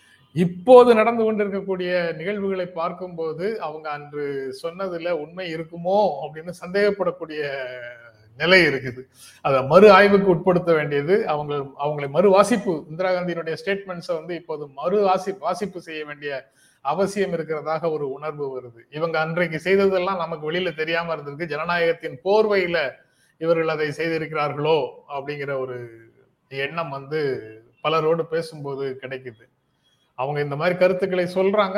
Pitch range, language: 145-195 Hz, Tamil